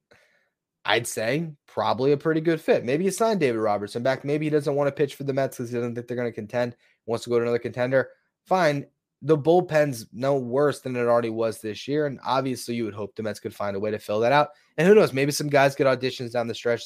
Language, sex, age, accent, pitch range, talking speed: English, male, 20-39, American, 115-155 Hz, 265 wpm